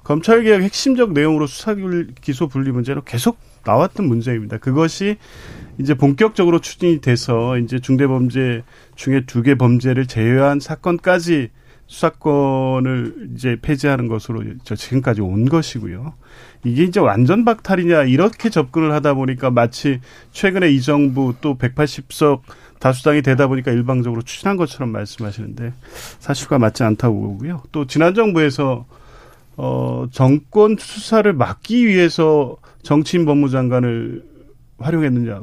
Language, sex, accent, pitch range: Korean, male, native, 125-175 Hz